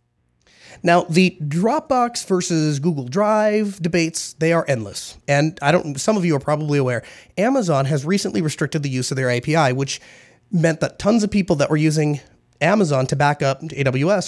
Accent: American